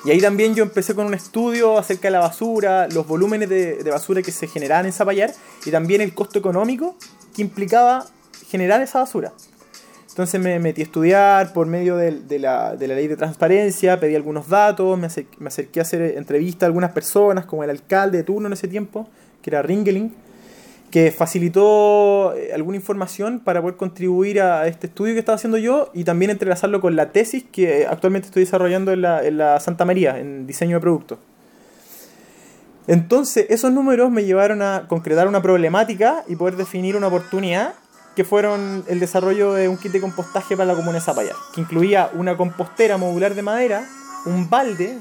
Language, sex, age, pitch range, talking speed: Spanish, male, 20-39, 175-210 Hz, 190 wpm